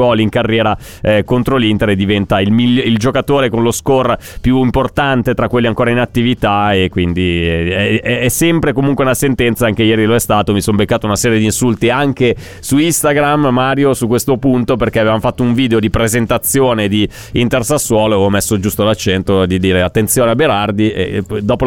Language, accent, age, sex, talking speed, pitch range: Italian, native, 30-49, male, 195 wpm, 110-130 Hz